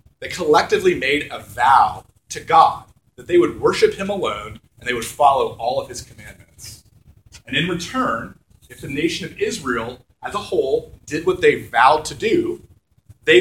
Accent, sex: American, male